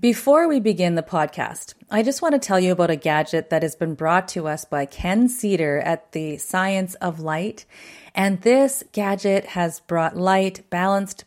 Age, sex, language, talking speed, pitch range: 30-49, female, English, 185 wpm, 165-195 Hz